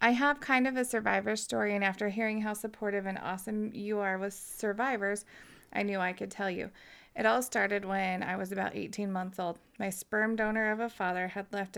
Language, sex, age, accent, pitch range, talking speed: English, female, 30-49, American, 195-225 Hz, 215 wpm